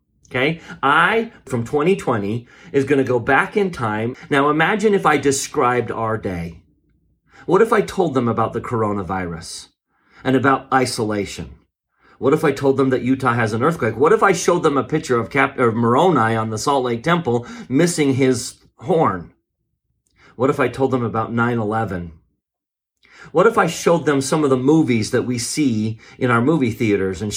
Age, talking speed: 40-59, 180 wpm